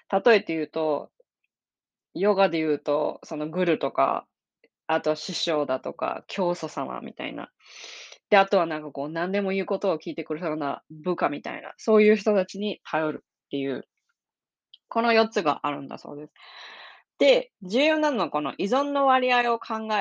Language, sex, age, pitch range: Japanese, female, 20-39, 155-230 Hz